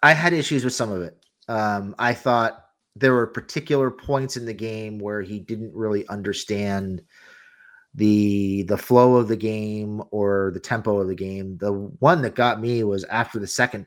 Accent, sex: American, male